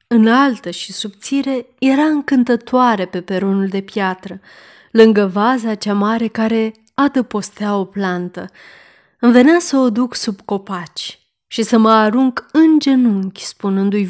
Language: Romanian